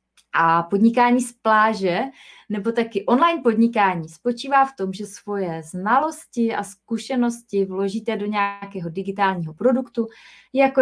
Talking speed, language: 120 wpm, Czech